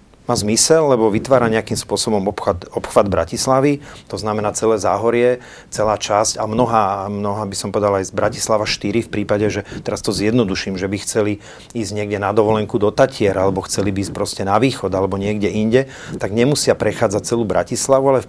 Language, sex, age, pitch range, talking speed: Slovak, male, 40-59, 100-115 Hz, 180 wpm